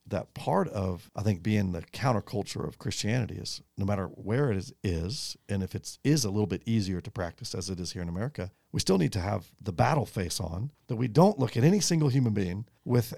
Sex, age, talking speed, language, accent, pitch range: male, 50-69, 235 wpm, English, American, 95-130 Hz